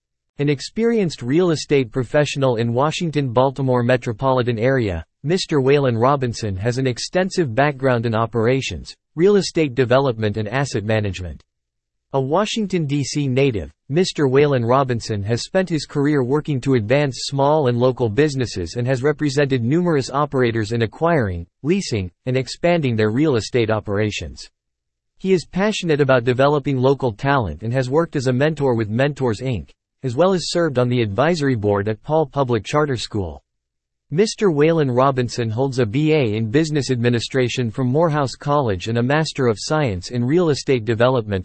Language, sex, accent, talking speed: English, male, American, 155 wpm